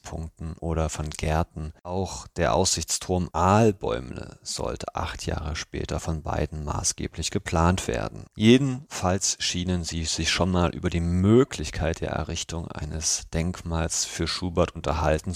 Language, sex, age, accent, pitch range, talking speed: German, male, 40-59, German, 80-95 Hz, 125 wpm